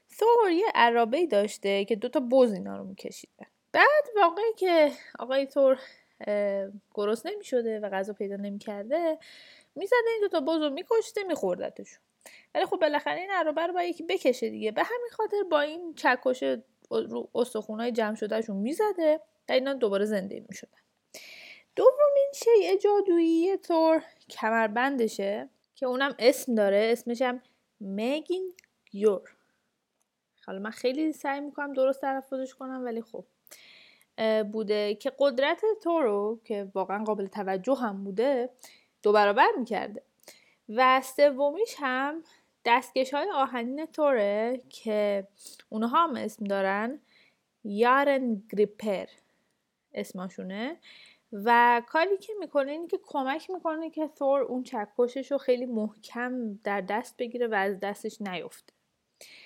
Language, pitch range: Persian, 215-310 Hz